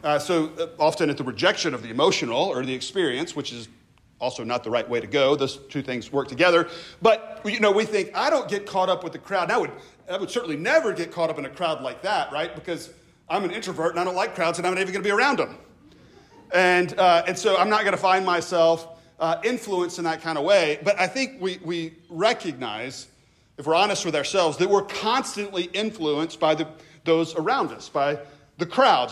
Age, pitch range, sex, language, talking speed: 40-59, 150-185 Hz, male, English, 235 wpm